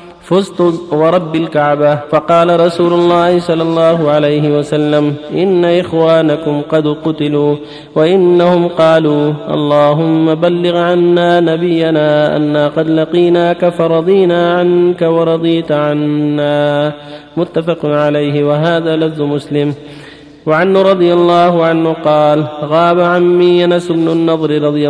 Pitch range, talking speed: 150-175 Hz, 100 wpm